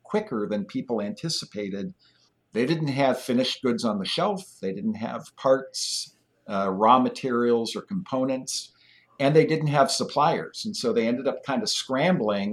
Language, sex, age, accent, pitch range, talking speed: English, male, 50-69, American, 105-145 Hz, 165 wpm